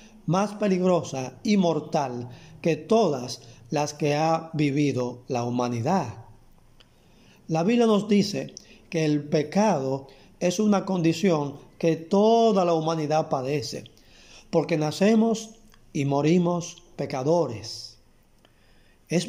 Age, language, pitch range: 40-59, Spanish, 130-180 Hz